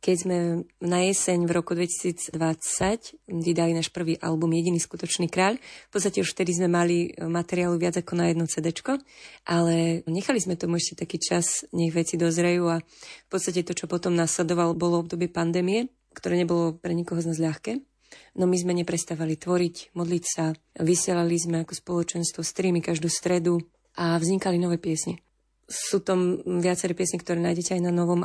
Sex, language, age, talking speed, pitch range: female, Slovak, 20-39, 170 wpm, 170-185 Hz